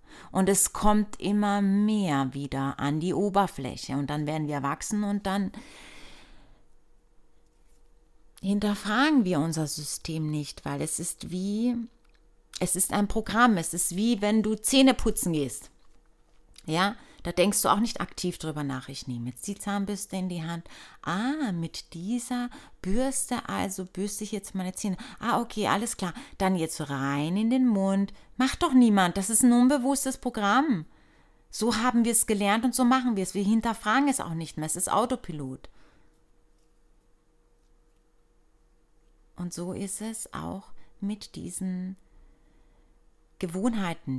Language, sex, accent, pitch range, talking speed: German, female, German, 160-215 Hz, 150 wpm